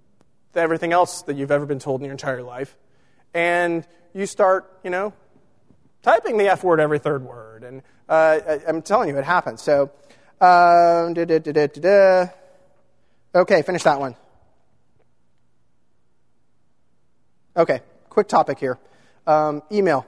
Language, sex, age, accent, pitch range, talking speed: English, male, 30-49, American, 145-185 Hz, 145 wpm